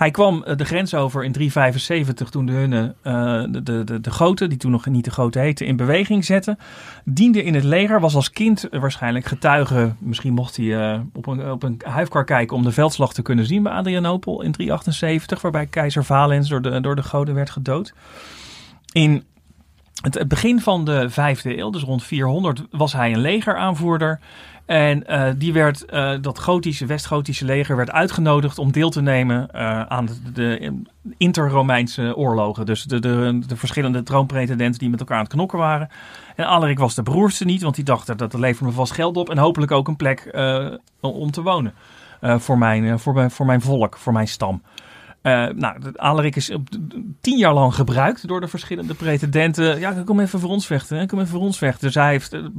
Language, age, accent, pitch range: Dutch, 40-59, Dutch, 125-160 Hz